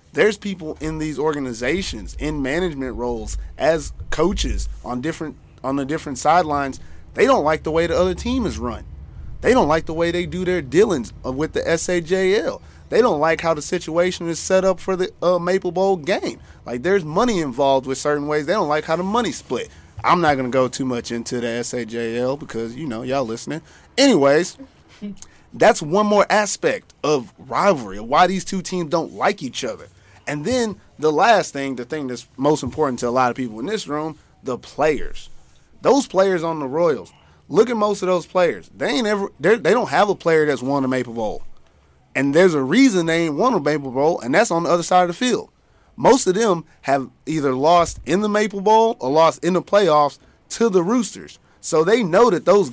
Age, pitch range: 30-49, 135-185 Hz